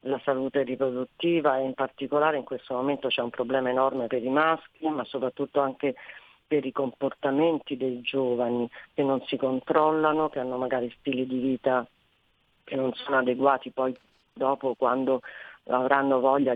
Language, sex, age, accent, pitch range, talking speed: Italian, female, 40-59, native, 130-145 Hz, 155 wpm